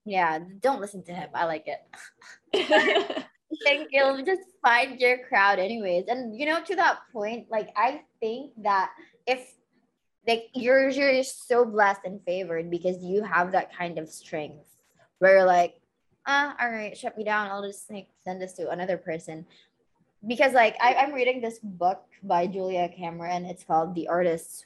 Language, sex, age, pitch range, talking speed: English, female, 20-39, 175-225 Hz, 180 wpm